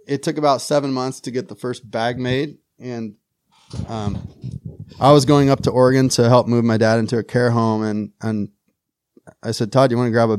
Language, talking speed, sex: English, 220 wpm, male